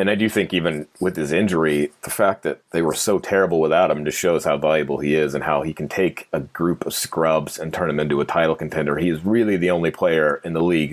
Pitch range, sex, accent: 80-105 Hz, male, American